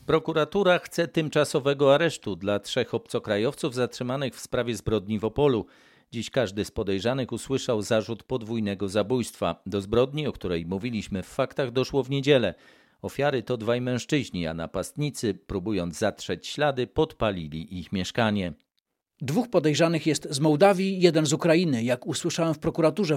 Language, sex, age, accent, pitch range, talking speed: Polish, male, 40-59, native, 125-180 Hz, 140 wpm